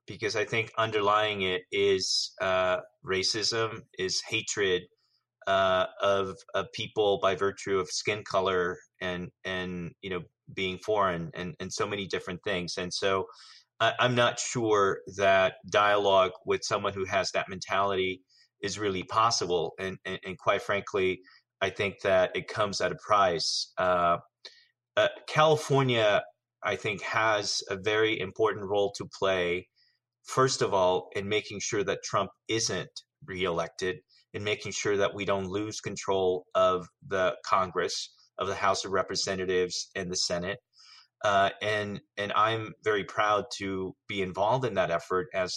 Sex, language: male, English